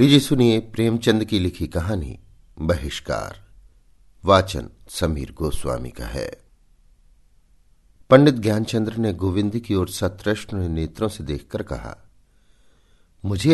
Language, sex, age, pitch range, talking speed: Hindi, male, 50-69, 80-120 Hz, 110 wpm